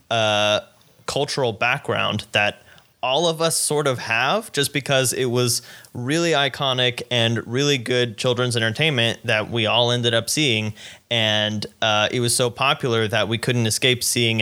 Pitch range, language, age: 115-145 Hz, English, 20-39